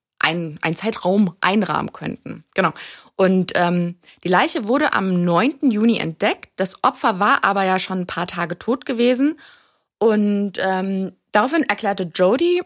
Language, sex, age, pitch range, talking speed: German, female, 20-39, 175-230 Hz, 140 wpm